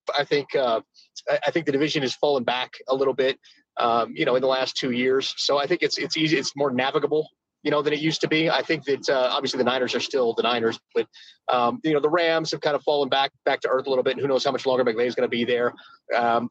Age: 30-49